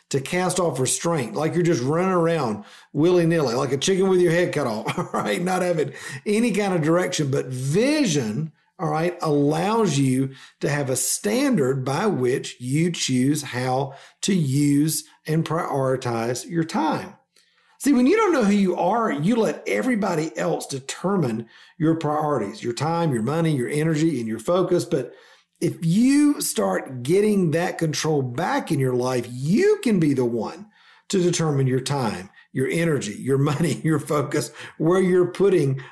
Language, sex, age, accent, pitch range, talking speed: English, male, 50-69, American, 135-180 Hz, 165 wpm